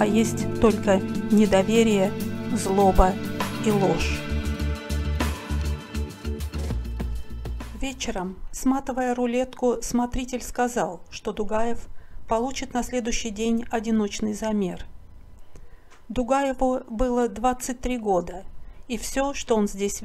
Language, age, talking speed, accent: Russian, 50-69, 85 wpm, native